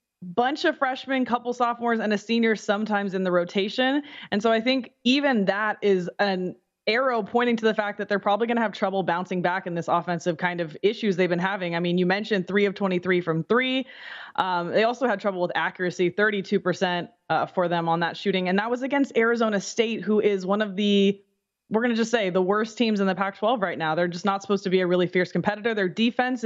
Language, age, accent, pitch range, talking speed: English, 20-39, American, 180-225 Hz, 235 wpm